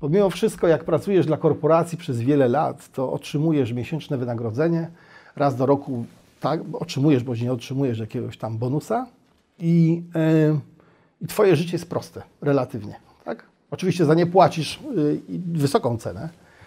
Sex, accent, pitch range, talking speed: male, native, 140-170 Hz, 150 wpm